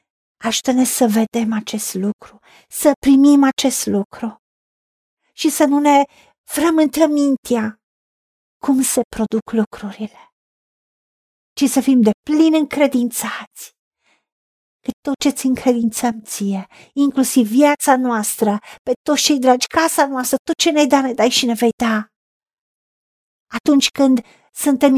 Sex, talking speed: female, 125 wpm